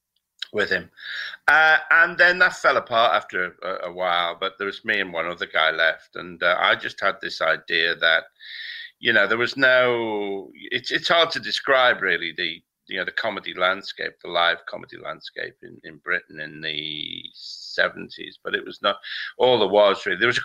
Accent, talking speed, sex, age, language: British, 195 wpm, male, 50-69, English